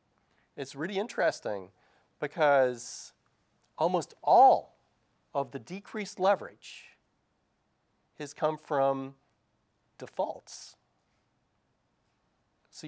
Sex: male